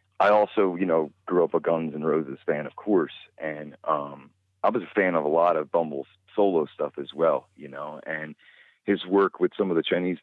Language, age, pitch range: English, 30-49, 80-105 Hz